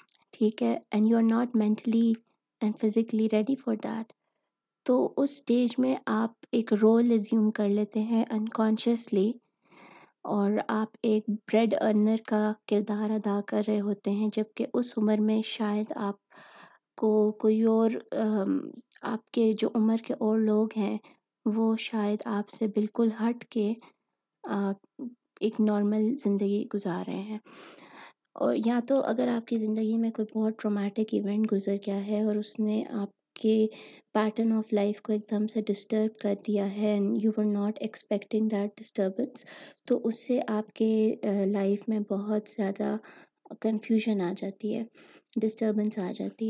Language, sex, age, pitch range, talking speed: Urdu, female, 20-39, 210-225 Hz, 155 wpm